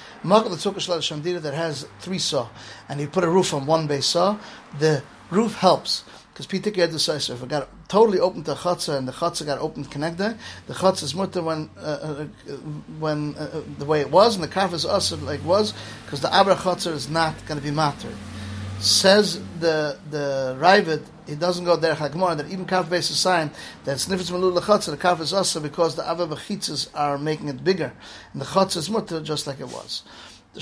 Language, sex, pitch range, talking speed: English, male, 150-185 Hz, 200 wpm